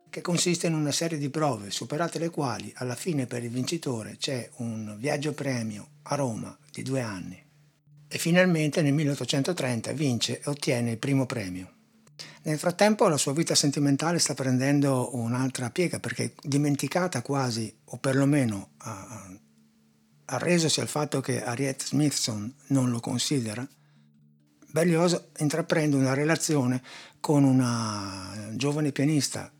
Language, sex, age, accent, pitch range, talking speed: Italian, male, 60-79, native, 120-155 Hz, 135 wpm